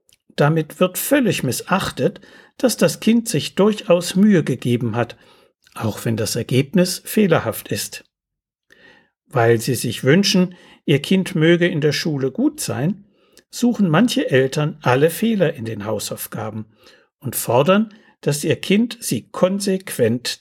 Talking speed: 130 wpm